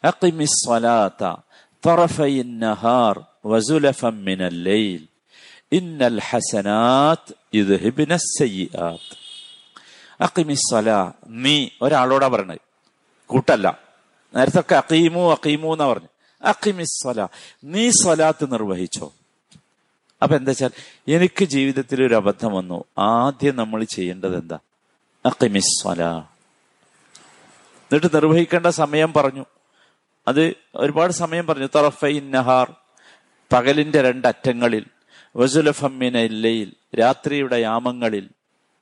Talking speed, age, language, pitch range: 85 wpm, 50-69, Malayalam, 110-150 Hz